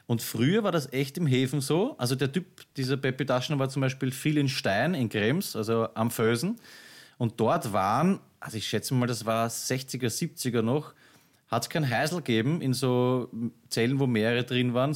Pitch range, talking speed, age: 115-145 Hz, 195 wpm, 30-49